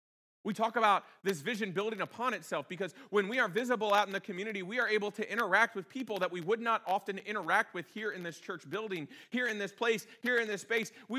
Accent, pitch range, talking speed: American, 180-245 Hz, 240 wpm